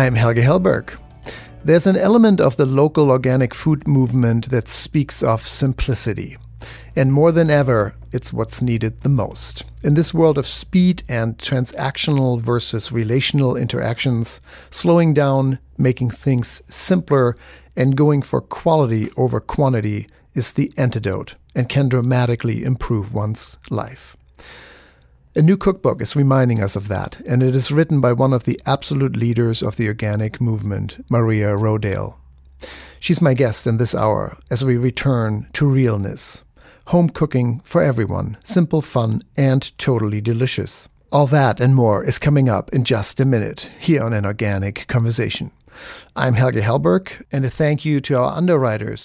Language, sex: English, male